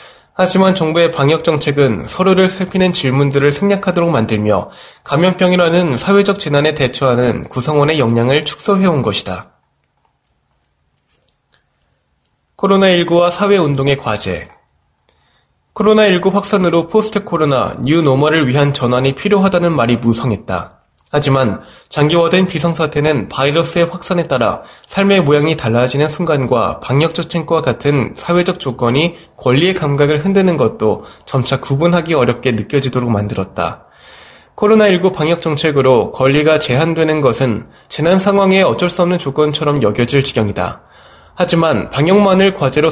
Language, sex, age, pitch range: Korean, male, 20-39, 130-180 Hz